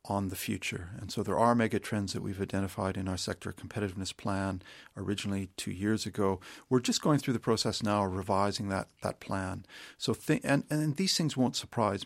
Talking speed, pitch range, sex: 200 wpm, 95-115 Hz, male